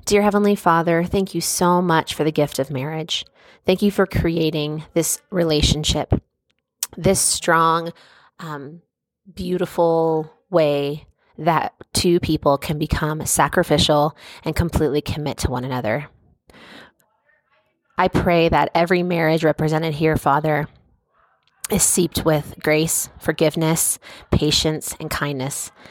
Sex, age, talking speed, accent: female, 30-49, 120 wpm, American